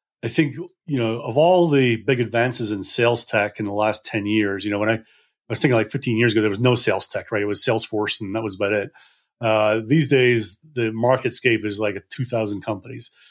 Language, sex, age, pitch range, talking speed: English, male, 30-49, 110-140 Hz, 235 wpm